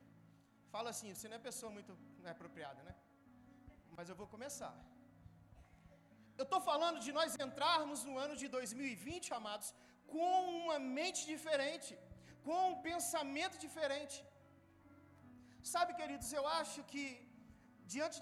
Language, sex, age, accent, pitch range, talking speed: Gujarati, male, 40-59, Brazilian, 255-330 Hz, 130 wpm